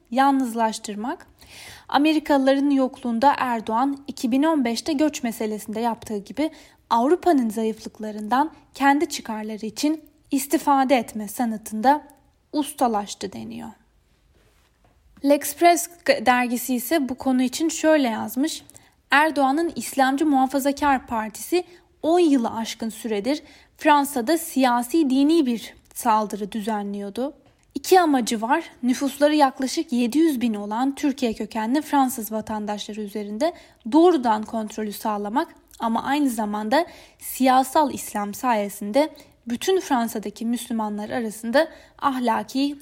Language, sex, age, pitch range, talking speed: Turkish, female, 10-29, 225-295 Hz, 95 wpm